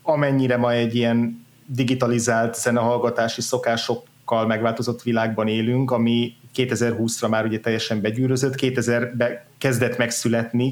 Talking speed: 105 wpm